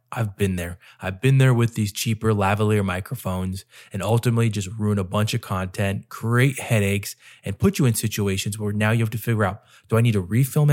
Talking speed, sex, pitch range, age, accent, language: 215 wpm, male, 100-120 Hz, 20-39, American, English